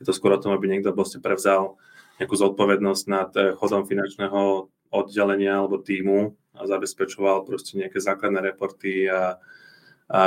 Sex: male